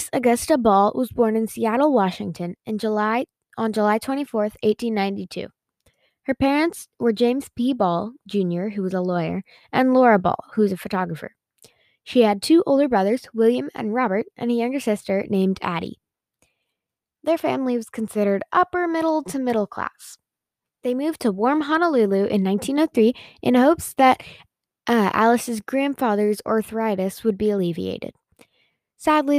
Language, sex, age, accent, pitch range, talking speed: English, female, 10-29, American, 205-265 Hz, 145 wpm